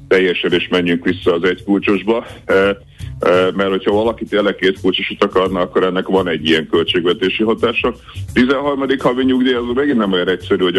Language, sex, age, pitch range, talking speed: Hungarian, male, 50-69, 90-110 Hz, 170 wpm